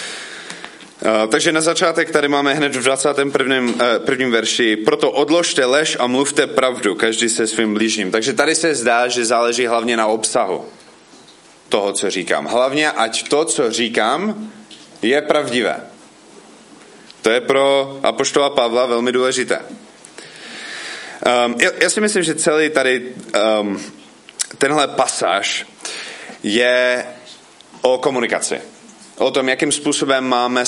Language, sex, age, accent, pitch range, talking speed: Czech, male, 30-49, native, 115-145 Hz, 130 wpm